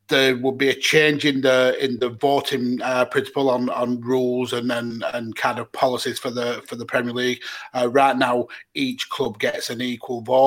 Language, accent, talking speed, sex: English, British, 210 wpm, male